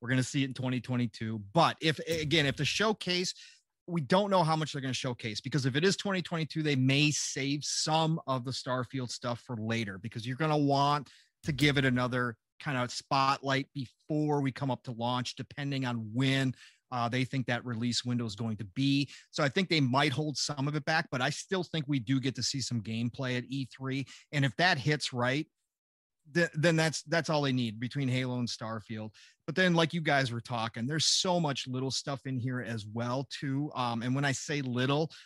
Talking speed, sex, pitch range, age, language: 220 wpm, male, 125-150 Hz, 30-49, English